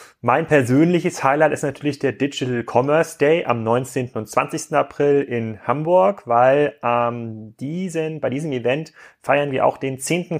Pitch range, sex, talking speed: 115-140 Hz, male, 155 wpm